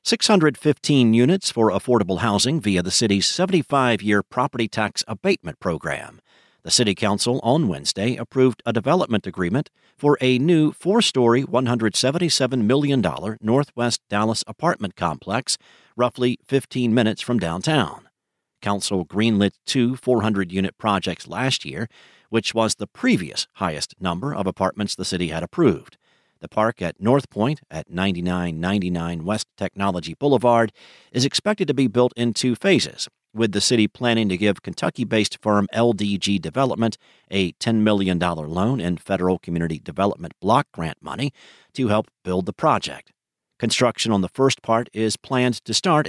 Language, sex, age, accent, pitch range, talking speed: English, male, 50-69, American, 100-130 Hz, 140 wpm